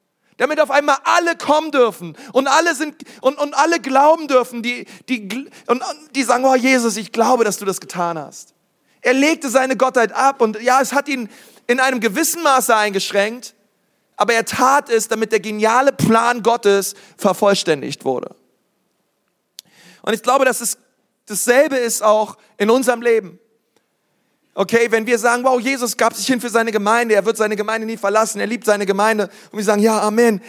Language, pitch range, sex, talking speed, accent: German, 215-260 Hz, male, 180 wpm, German